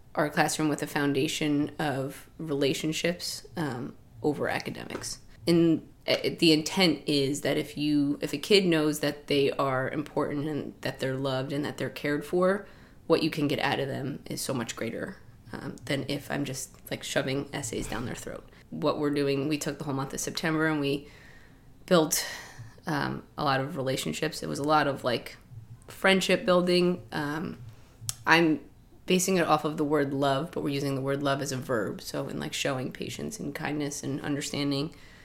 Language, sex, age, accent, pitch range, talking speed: English, female, 20-39, American, 135-155 Hz, 185 wpm